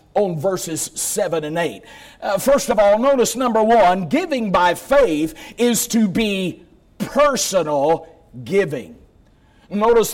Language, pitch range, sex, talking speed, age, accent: English, 190-260 Hz, male, 120 wpm, 50-69, American